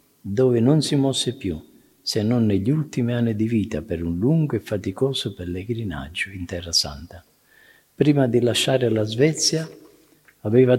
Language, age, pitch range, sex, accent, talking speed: Italian, 50-69, 95-125 Hz, male, native, 150 wpm